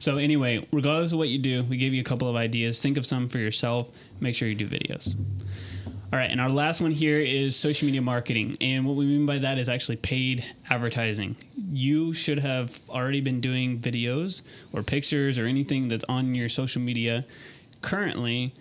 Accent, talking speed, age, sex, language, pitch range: American, 200 wpm, 20-39, male, English, 120-135 Hz